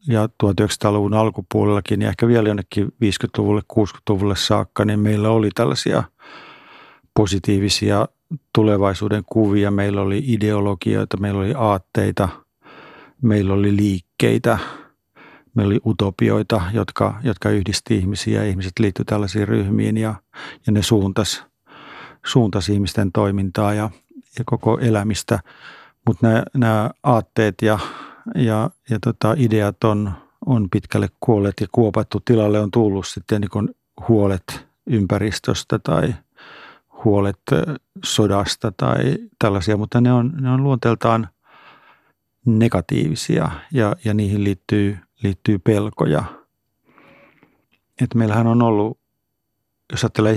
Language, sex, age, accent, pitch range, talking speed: Finnish, male, 50-69, native, 100-115 Hz, 110 wpm